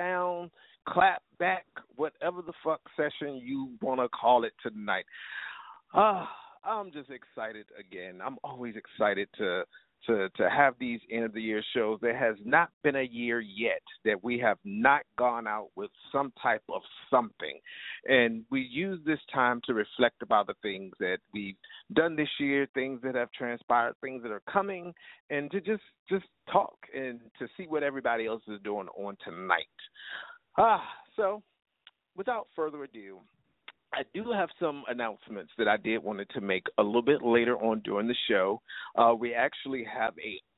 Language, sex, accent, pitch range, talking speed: English, male, American, 115-180 Hz, 165 wpm